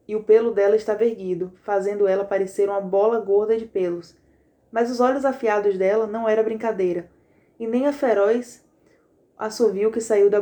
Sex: female